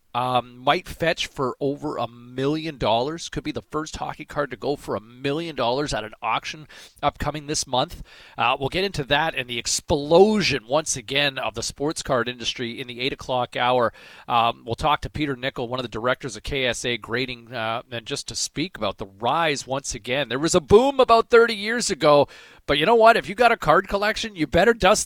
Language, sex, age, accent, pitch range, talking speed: English, male, 40-59, American, 130-175 Hz, 215 wpm